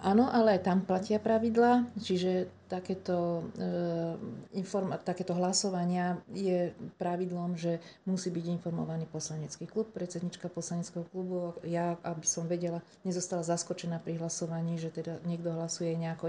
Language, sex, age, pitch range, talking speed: Slovak, female, 40-59, 165-185 Hz, 130 wpm